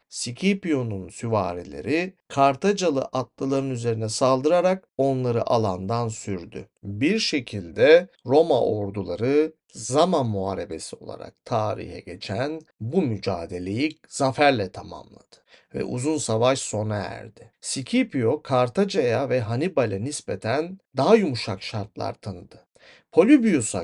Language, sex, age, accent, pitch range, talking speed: Turkish, male, 50-69, native, 110-155 Hz, 95 wpm